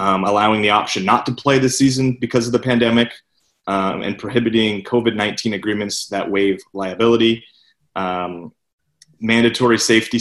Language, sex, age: English, male, 30-49